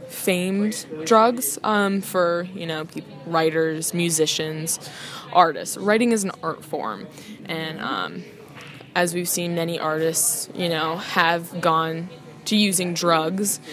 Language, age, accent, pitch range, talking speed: English, 10-29, American, 165-205 Hz, 120 wpm